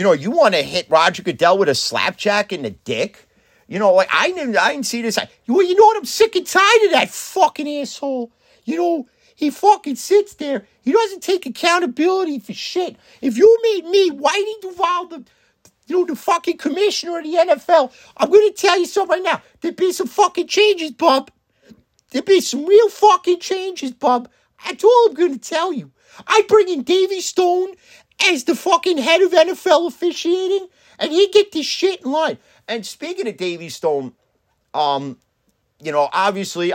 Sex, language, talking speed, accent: male, English, 190 wpm, American